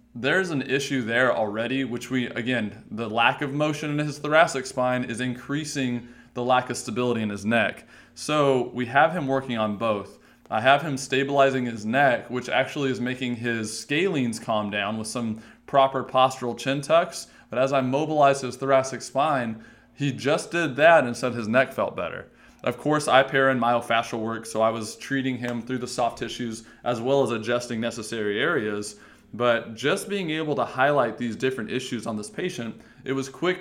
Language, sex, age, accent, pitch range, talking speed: English, male, 20-39, American, 115-140 Hz, 190 wpm